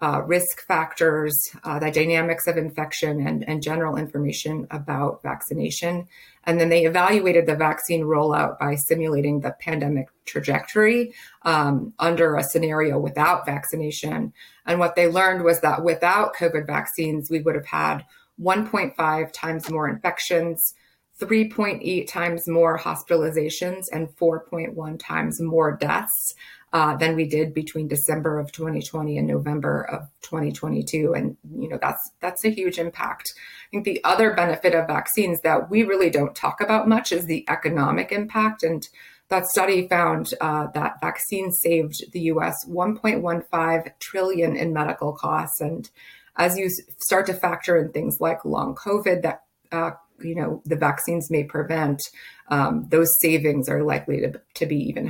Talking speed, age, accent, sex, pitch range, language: 150 wpm, 30-49, American, female, 155-180 Hz, English